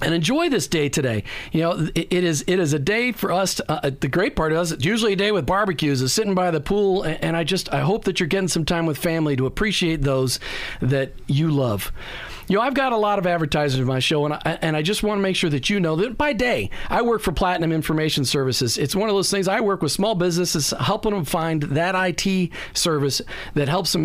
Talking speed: 250 wpm